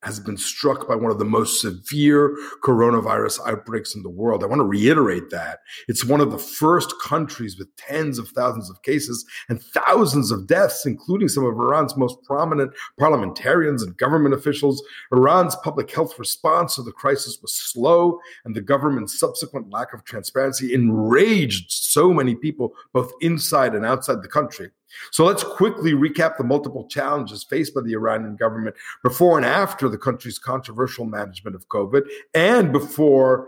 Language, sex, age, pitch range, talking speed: English, male, 50-69, 115-145 Hz, 170 wpm